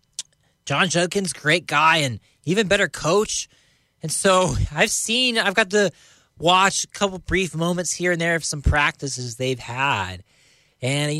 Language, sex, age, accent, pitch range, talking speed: English, male, 20-39, American, 130-170 Hz, 160 wpm